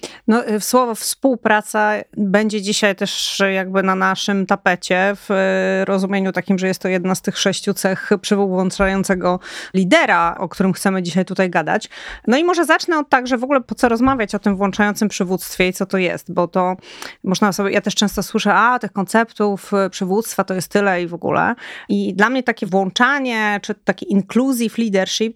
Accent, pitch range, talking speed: native, 190-245 Hz, 180 wpm